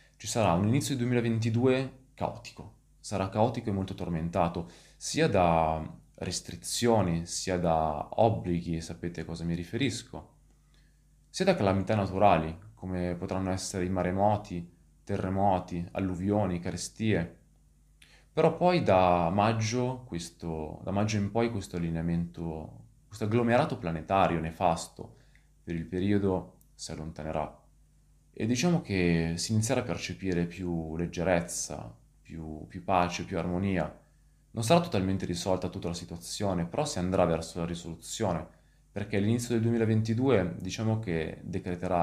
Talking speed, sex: 125 wpm, male